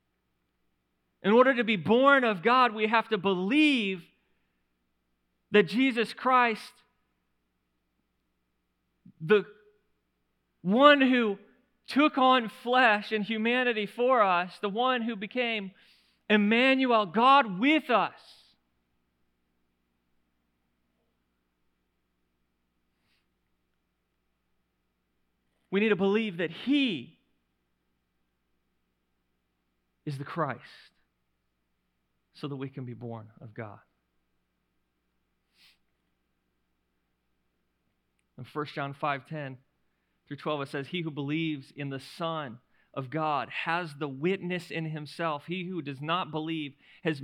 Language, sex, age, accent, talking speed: English, male, 40-59, American, 95 wpm